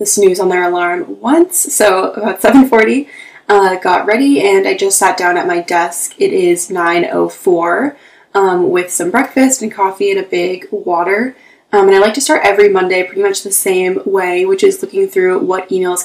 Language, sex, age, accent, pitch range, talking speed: English, female, 20-39, American, 190-315 Hz, 195 wpm